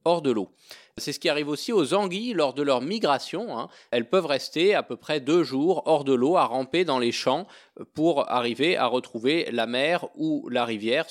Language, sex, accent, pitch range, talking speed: French, male, French, 120-160 Hz, 215 wpm